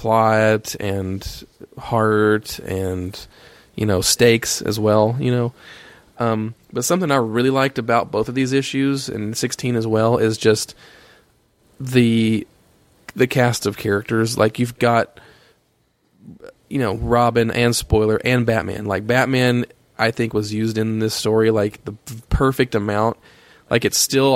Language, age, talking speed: English, 20-39, 145 wpm